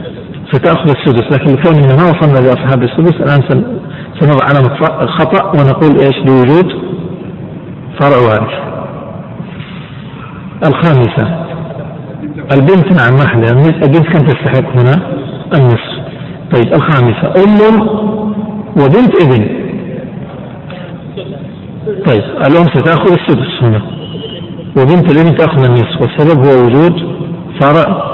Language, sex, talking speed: Arabic, male, 95 wpm